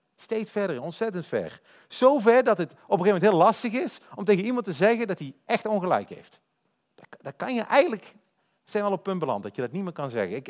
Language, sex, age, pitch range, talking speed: Dutch, male, 50-69, 135-205 Hz, 255 wpm